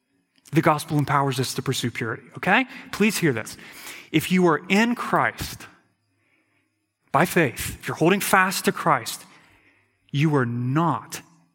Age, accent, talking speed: 30-49, American, 140 wpm